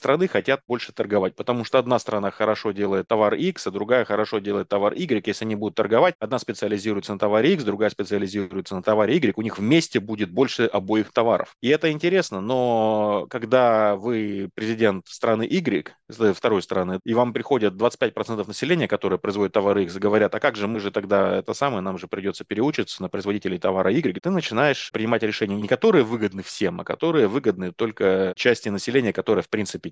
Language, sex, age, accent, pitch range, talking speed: Russian, male, 30-49, native, 105-130 Hz, 185 wpm